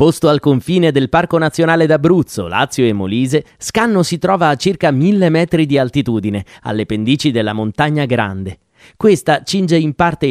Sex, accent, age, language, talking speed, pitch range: male, native, 30-49, Italian, 165 wpm, 115-165 Hz